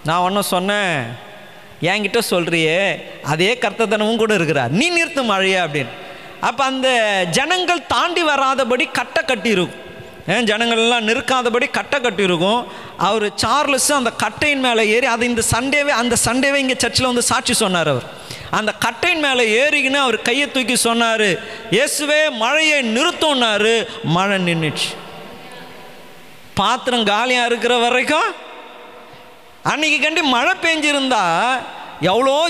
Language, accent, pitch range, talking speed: Tamil, native, 180-270 Hz, 120 wpm